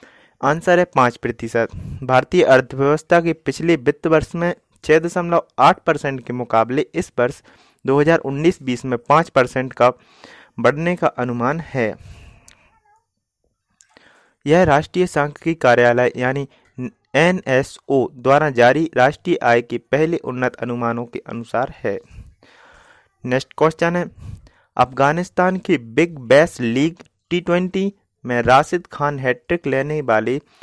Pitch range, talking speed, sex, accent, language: 125-170 Hz, 120 wpm, male, native, Hindi